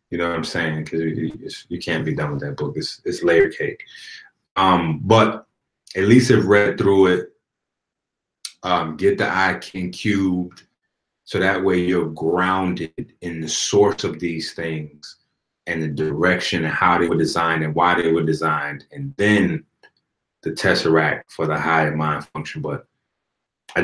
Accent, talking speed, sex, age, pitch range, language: American, 165 wpm, male, 30-49, 80-120 Hz, English